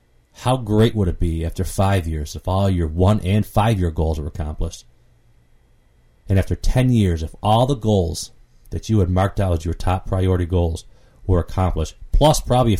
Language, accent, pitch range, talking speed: English, American, 85-100 Hz, 190 wpm